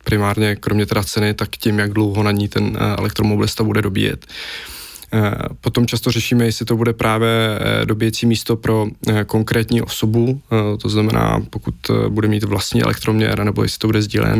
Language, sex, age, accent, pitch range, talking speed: Czech, male, 20-39, native, 105-115 Hz, 160 wpm